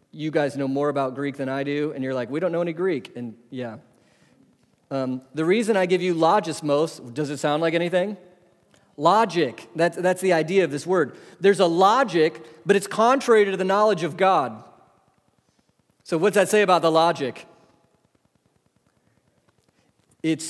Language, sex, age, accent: English, male, 40-59, American